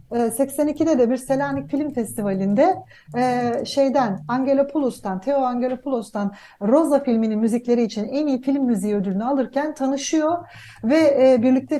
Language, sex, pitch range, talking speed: Turkish, female, 220-290 Hz, 110 wpm